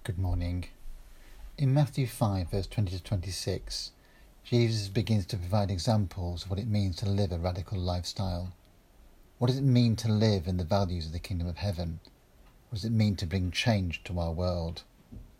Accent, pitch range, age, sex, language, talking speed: British, 90-115 Hz, 40-59, male, English, 185 wpm